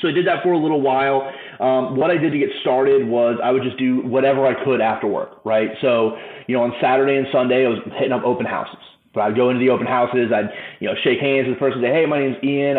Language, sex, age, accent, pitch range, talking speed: English, male, 20-39, American, 120-150 Hz, 280 wpm